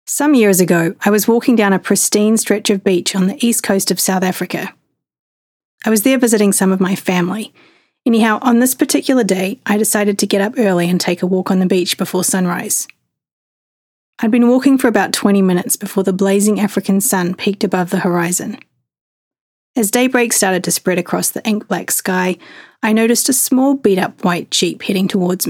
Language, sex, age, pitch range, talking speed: English, female, 30-49, 185-220 Hz, 190 wpm